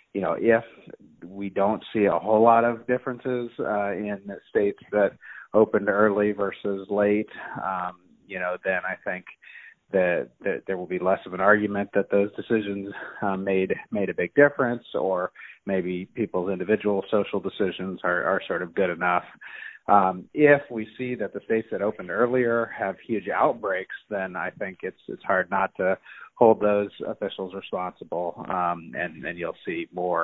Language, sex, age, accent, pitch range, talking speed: English, male, 30-49, American, 95-115 Hz, 170 wpm